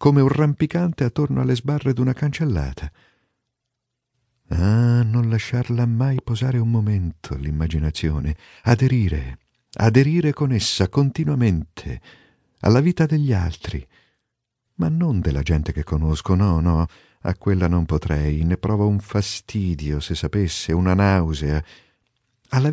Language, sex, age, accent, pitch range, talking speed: Italian, male, 50-69, native, 85-130 Hz, 125 wpm